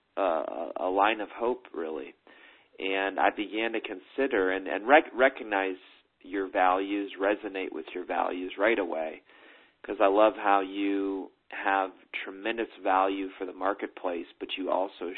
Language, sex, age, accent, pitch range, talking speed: English, male, 40-59, American, 95-100 Hz, 145 wpm